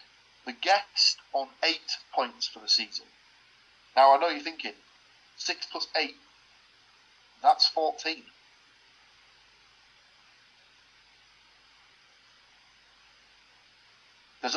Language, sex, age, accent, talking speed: English, male, 40-59, British, 80 wpm